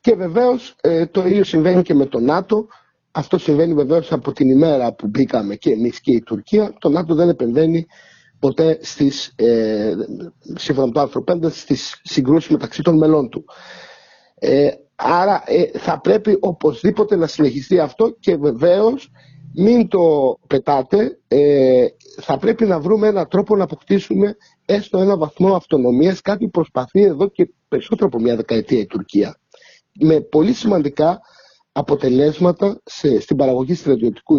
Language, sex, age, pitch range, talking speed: Greek, male, 50-69, 145-215 Hz, 130 wpm